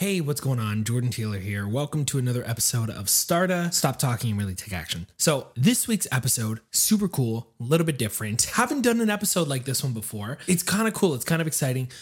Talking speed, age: 225 wpm, 30-49